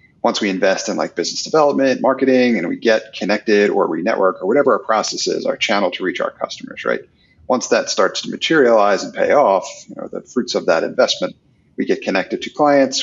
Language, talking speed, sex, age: English, 215 wpm, male, 30-49